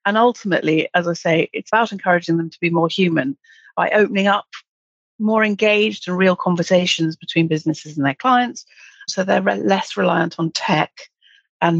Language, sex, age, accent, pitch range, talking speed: English, female, 40-59, British, 160-185 Hz, 170 wpm